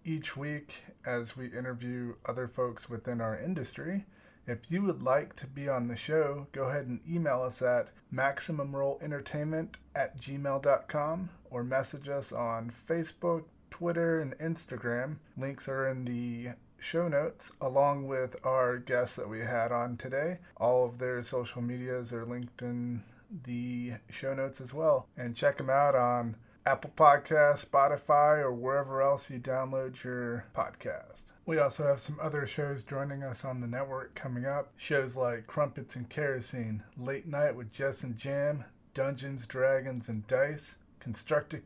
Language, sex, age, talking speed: English, male, 30-49, 155 wpm